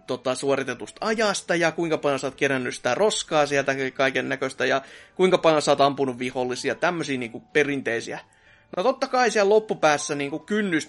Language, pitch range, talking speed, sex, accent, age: Finnish, 135-185 Hz, 155 wpm, male, native, 30-49